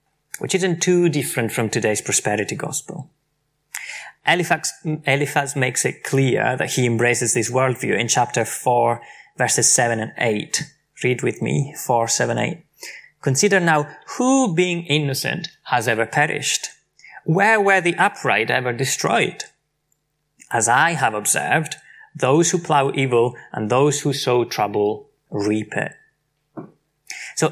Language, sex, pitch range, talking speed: English, male, 125-170 Hz, 135 wpm